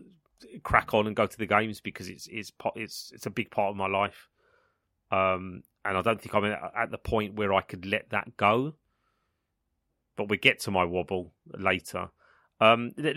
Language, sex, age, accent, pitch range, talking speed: English, male, 30-49, British, 95-120 Hz, 190 wpm